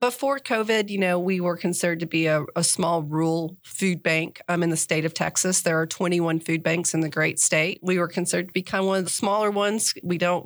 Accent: American